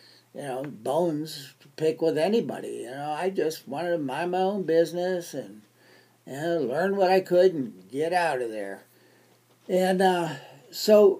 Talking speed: 165 wpm